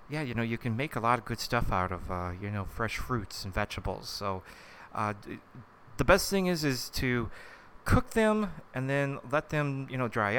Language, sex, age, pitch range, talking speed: English, male, 30-49, 100-130 Hz, 220 wpm